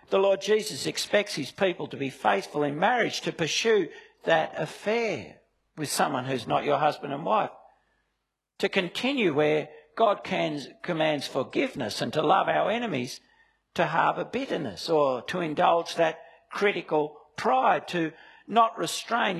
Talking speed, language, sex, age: 140 wpm, English, male, 60-79